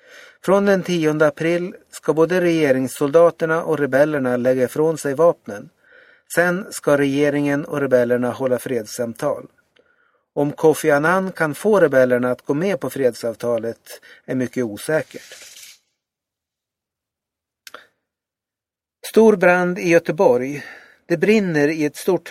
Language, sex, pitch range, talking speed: Swedish, male, 135-175 Hz, 115 wpm